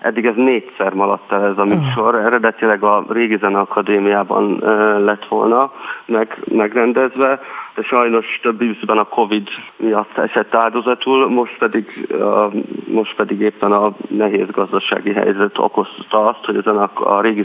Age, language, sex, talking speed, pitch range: 40-59, Hungarian, male, 145 wpm, 105-120 Hz